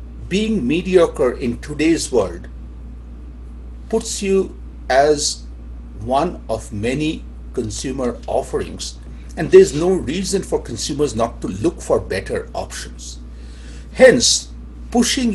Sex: male